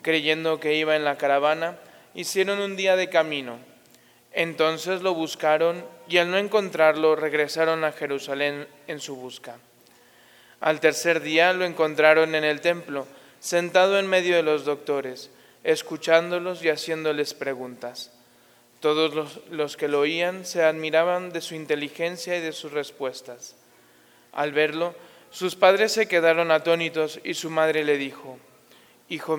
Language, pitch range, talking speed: Spanish, 145-175 Hz, 145 wpm